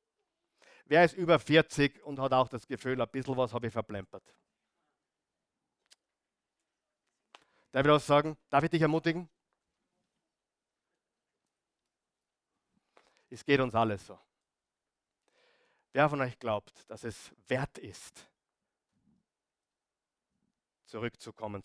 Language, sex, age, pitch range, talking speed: German, male, 50-69, 125-170 Hz, 105 wpm